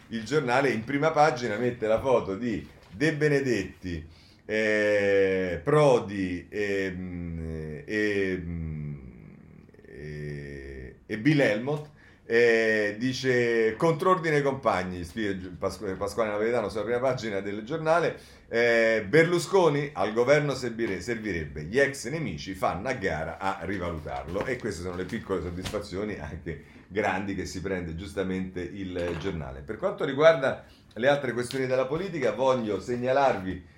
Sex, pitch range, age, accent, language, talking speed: male, 95-130 Hz, 40-59, native, Italian, 125 wpm